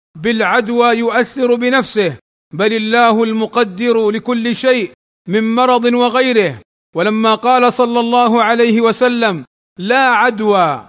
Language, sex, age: Arabic, male, 40-59